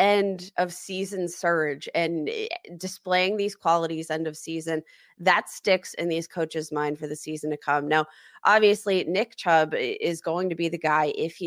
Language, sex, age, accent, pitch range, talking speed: English, female, 20-39, American, 160-190 Hz, 180 wpm